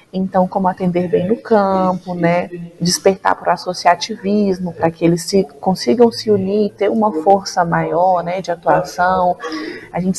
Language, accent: Portuguese, Brazilian